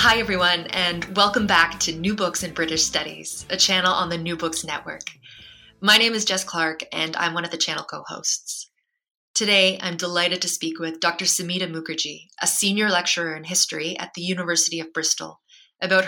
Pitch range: 165-200 Hz